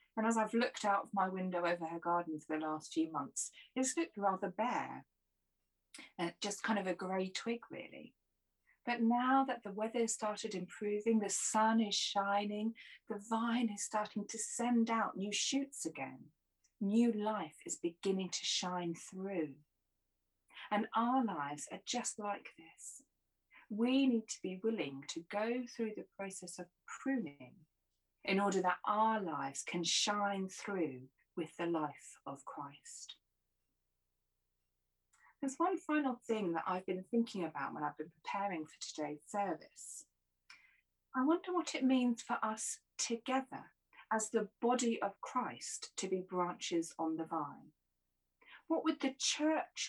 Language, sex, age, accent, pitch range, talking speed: English, female, 40-59, British, 170-235 Hz, 155 wpm